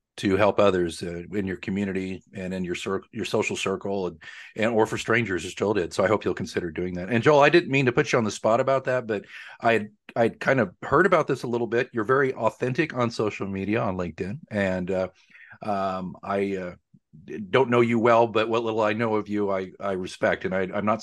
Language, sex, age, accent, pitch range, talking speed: English, male, 40-59, American, 100-125 Hz, 245 wpm